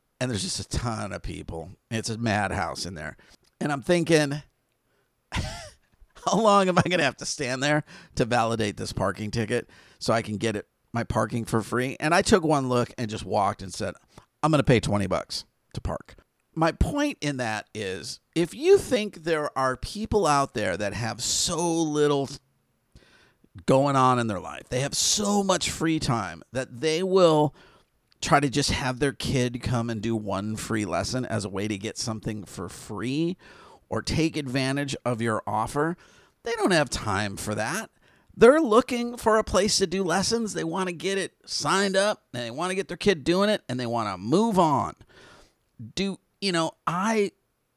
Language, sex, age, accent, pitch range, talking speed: English, male, 50-69, American, 115-175 Hz, 190 wpm